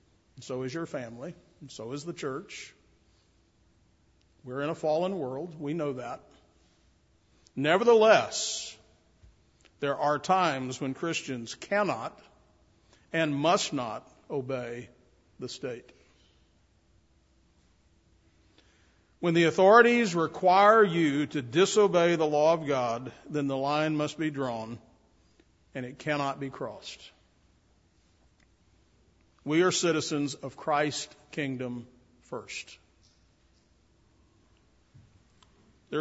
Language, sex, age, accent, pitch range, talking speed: English, male, 50-69, American, 110-160 Hz, 100 wpm